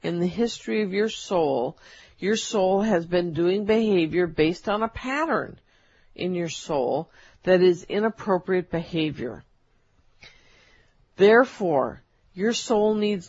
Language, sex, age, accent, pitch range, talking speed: English, female, 50-69, American, 175-230 Hz, 120 wpm